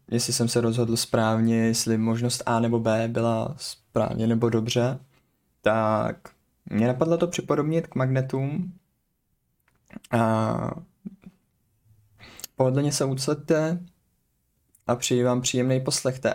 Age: 20-39